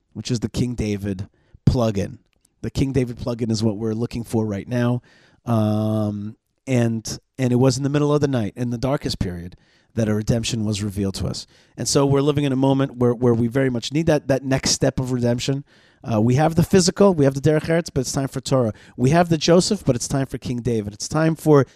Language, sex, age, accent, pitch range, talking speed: English, male, 40-59, American, 115-145 Hz, 235 wpm